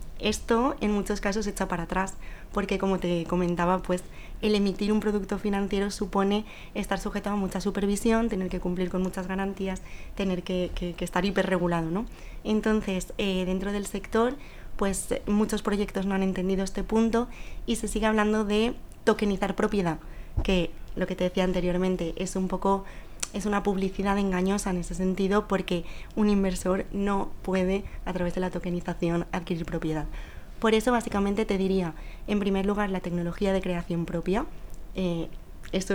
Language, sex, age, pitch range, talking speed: Spanish, female, 20-39, 180-205 Hz, 165 wpm